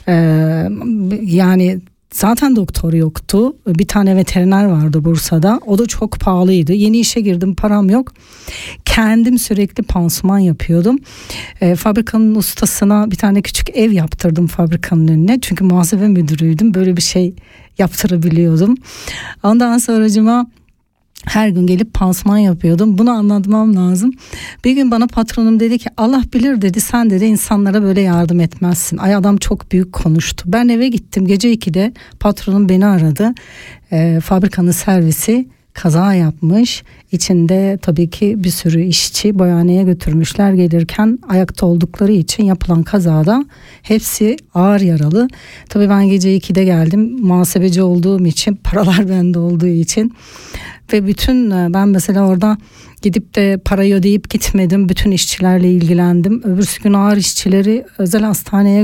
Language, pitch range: German, 180-215 Hz